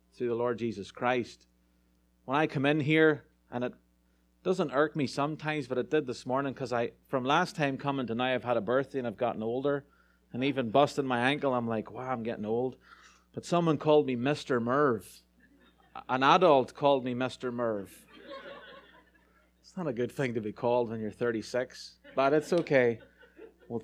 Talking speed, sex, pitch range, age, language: 190 wpm, male, 110-140 Hz, 30-49, English